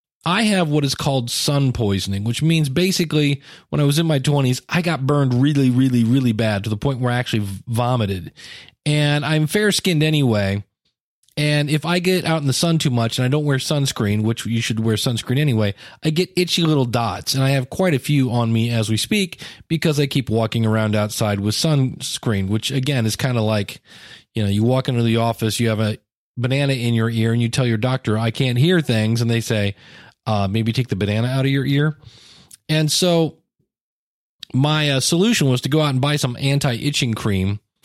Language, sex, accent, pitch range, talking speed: English, male, American, 115-150 Hz, 215 wpm